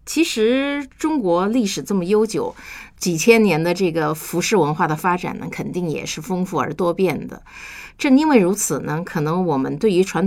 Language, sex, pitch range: Chinese, female, 160-220 Hz